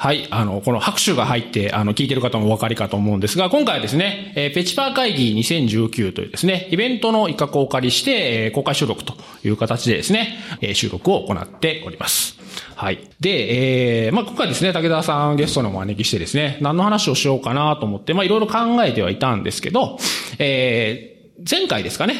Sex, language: male, Japanese